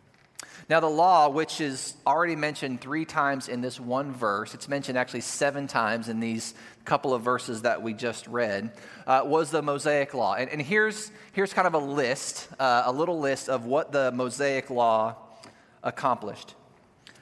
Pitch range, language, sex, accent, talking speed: 120-155 Hz, English, male, American, 175 wpm